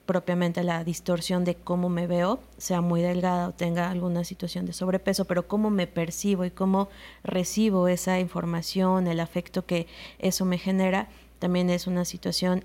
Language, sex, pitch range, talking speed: Spanish, female, 175-190 Hz, 165 wpm